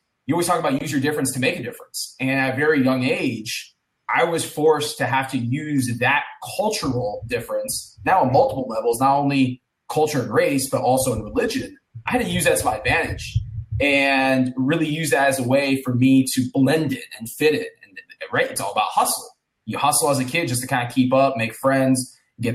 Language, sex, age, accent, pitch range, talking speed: English, male, 20-39, American, 125-155 Hz, 220 wpm